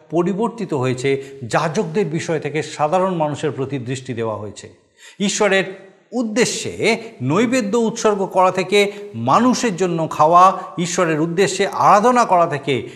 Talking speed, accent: 115 wpm, native